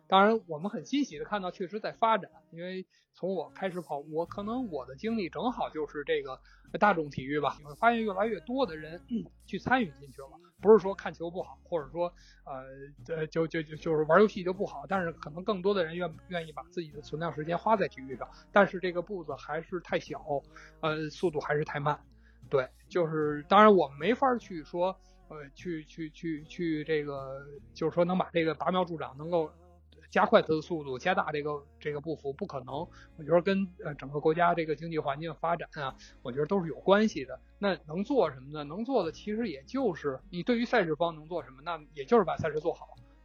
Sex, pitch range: male, 150-195 Hz